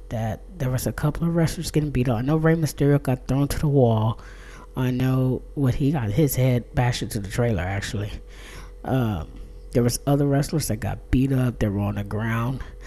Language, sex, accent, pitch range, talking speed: English, female, American, 110-140 Hz, 210 wpm